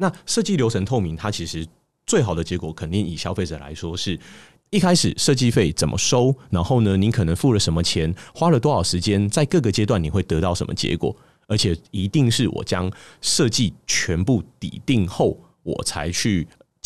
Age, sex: 30-49, male